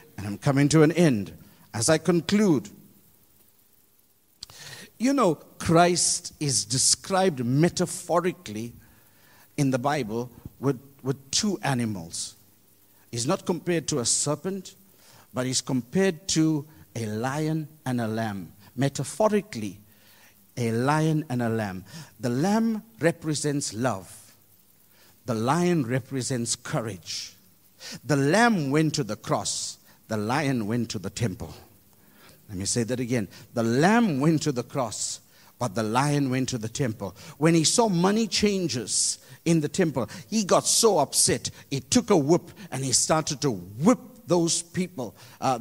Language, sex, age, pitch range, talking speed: English, male, 50-69, 110-160 Hz, 140 wpm